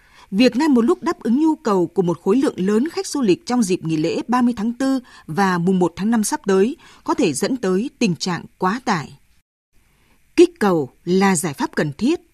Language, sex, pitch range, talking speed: Vietnamese, female, 185-260 Hz, 220 wpm